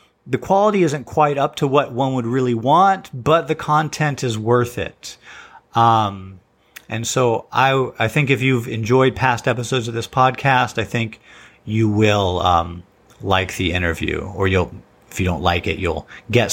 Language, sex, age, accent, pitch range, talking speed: English, male, 40-59, American, 100-130 Hz, 175 wpm